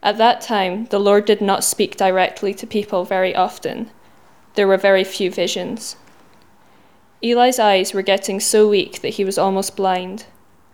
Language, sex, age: English, female, 20-39